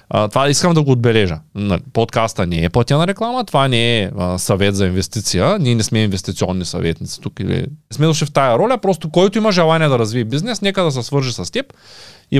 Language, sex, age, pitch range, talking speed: Bulgarian, male, 20-39, 105-145 Hz, 220 wpm